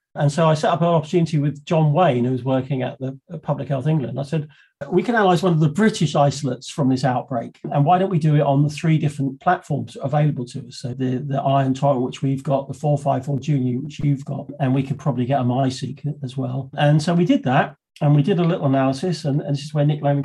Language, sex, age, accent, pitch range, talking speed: English, male, 40-59, British, 135-150 Hz, 260 wpm